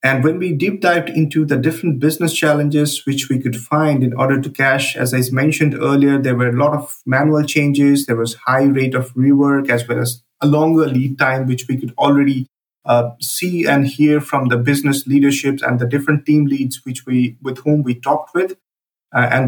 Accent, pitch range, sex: Indian, 125-150 Hz, male